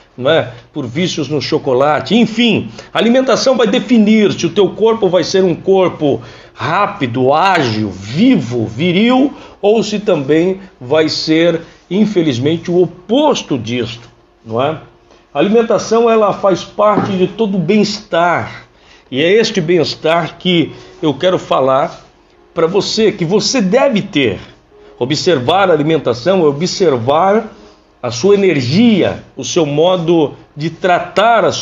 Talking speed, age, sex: 135 wpm, 60-79, male